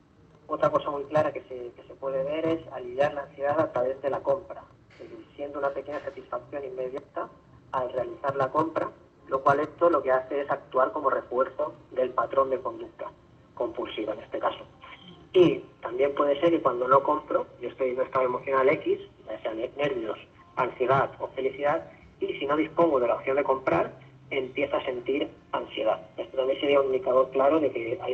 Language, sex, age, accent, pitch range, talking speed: Spanish, female, 30-49, Spanish, 130-155 Hz, 190 wpm